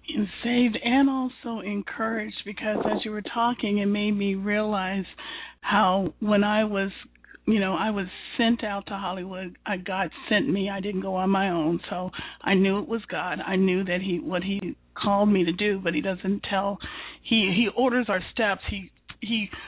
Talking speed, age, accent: 190 wpm, 40-59, American